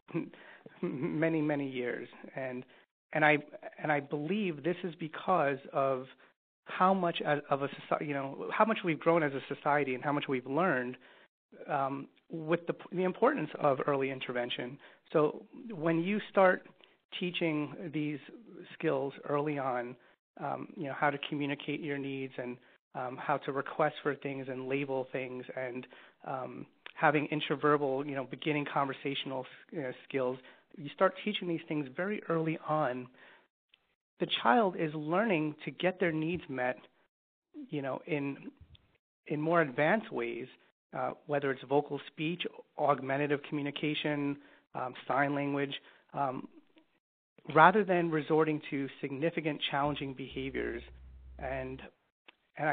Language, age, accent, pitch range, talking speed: English, 30-49, American, 135-165 Hz, 140 wpm